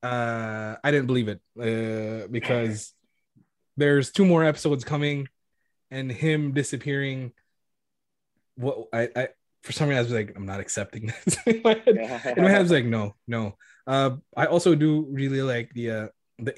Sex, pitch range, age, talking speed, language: male, 110-135 Hz, 20-39, 170 wpm, English